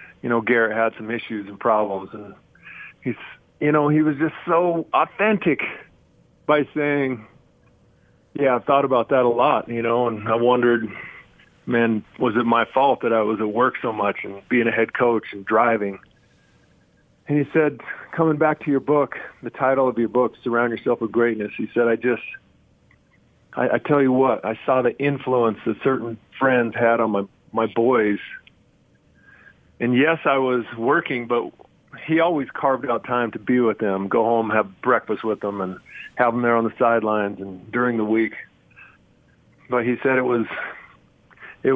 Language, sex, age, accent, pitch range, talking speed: English, male, 40-59, American, 110-135 Hz, 180 wpm